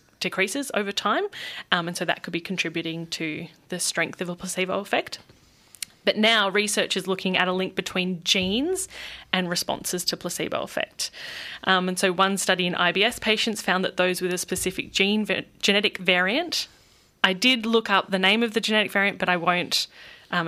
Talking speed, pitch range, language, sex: 185 wpm, 175-205 Hz, English, female